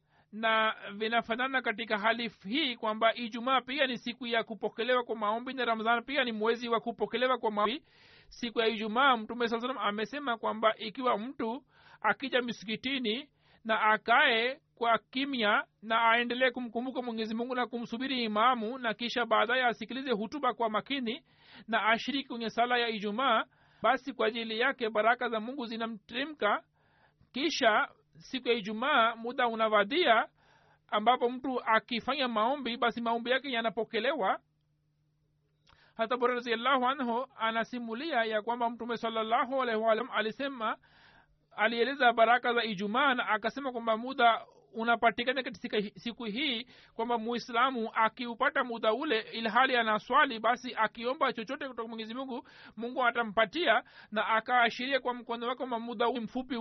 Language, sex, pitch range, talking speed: Swahili, male, 220-250 Hz, 135 wpm